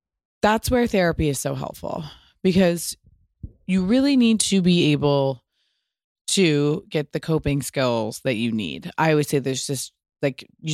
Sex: female